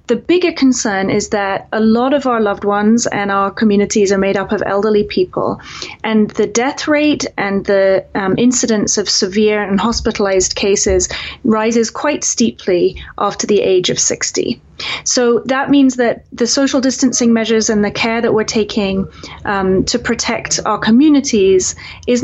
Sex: female